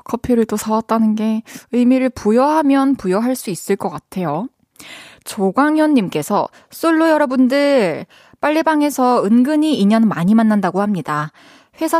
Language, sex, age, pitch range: Korean, female, 20-39, 200-275 Hz